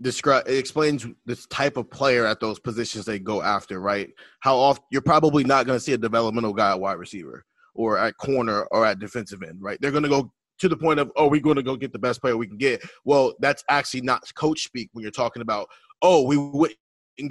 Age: 20-39